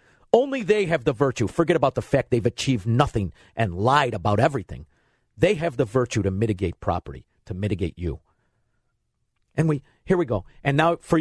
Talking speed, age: 180 wpm, 50-69